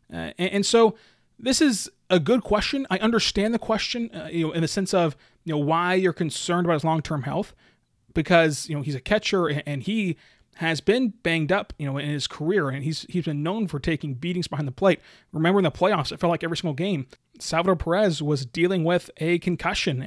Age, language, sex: 30-49, English, male